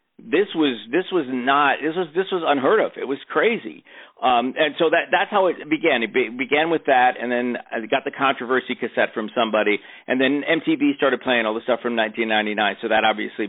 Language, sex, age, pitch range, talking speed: English, male, 50-69, 120-160 Hz, 220 wpm